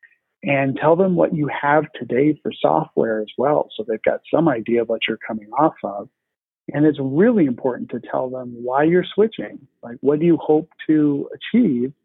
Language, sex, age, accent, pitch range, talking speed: English, male, 50-69, American, 130-180 Hz, 195 wpm